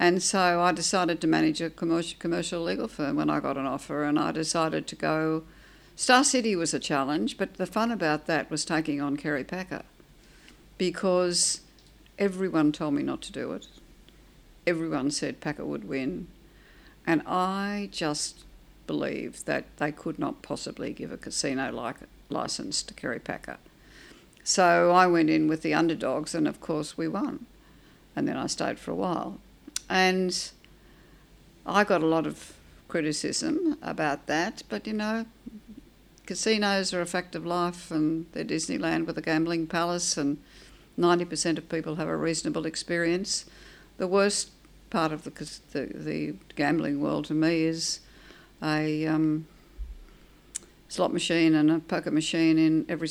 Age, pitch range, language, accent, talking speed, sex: 60-79, 155-180 Hz, English, Australian, 155 wpm, female